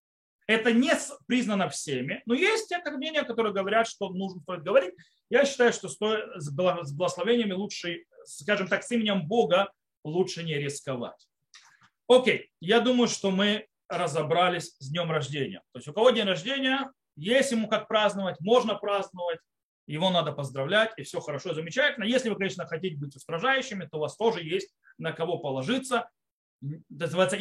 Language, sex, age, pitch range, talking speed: Russian, male, 30-49, 160-230 Hz, 155 wpm